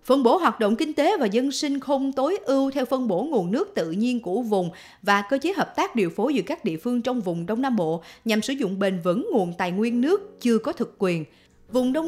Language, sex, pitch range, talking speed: Vietnamese, female, 180-265 Hz, 260 wpm